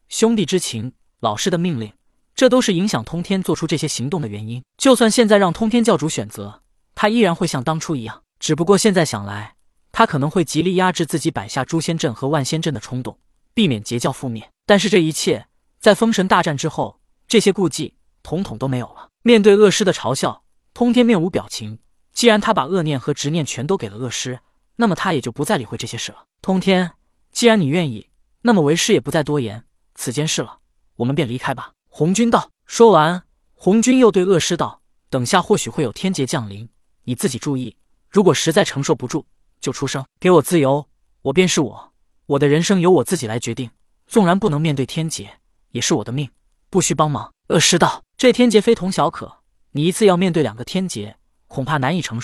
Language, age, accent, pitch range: Chinese, 20-39, native, 130-190 Hz